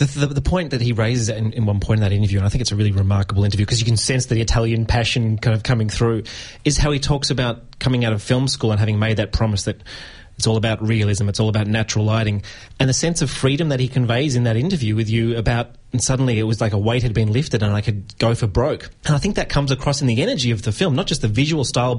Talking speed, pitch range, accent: 285 wpm, 110-130 Hz, Australian